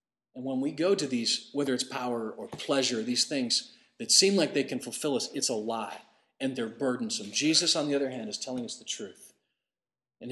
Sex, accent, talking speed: male, American, 215 wpm